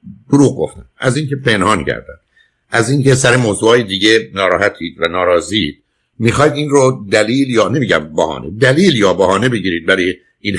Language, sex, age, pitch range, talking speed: Persian, male, 60-79, 100-130 Hz, 145 wpm